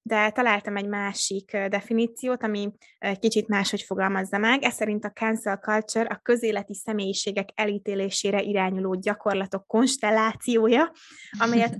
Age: 20-39